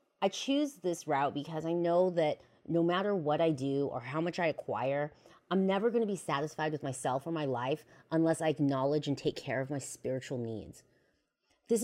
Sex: female